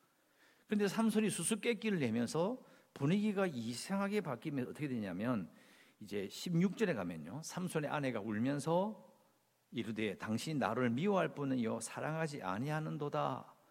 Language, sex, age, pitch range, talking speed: English, male, 50-69, 145-215 Hz, 95 wpm